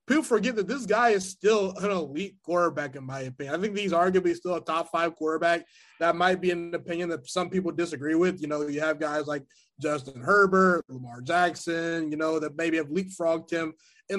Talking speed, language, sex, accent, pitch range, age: 210 wpm, English, male, American, 160-195 Hz, 20-39